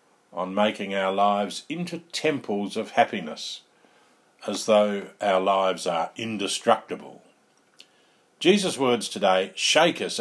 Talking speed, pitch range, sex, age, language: 110 wpm, 105-140 Hz, male, 50-69, English